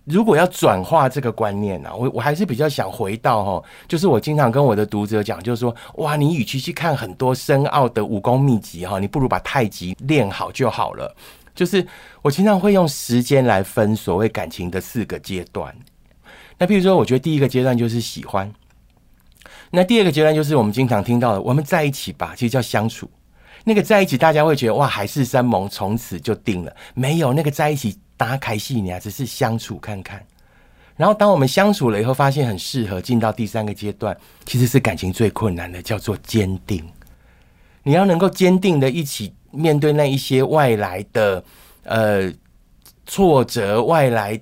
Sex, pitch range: male, 105-150 Hz